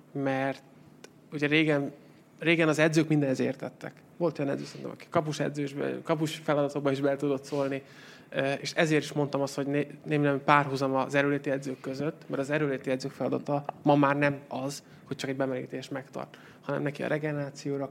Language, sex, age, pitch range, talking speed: Hungarian, male, 20-39, 135-150 Hz, 170 wpm